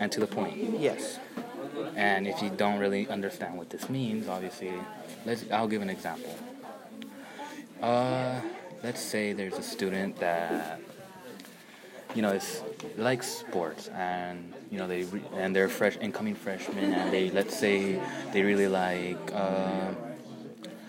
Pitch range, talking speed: 95-120 Hz, 140 wpm